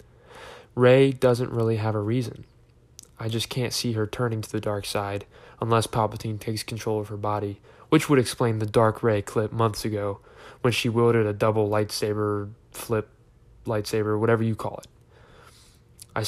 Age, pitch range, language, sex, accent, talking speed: 20-39, 105-120 Hz, English, male, American, 165 wpm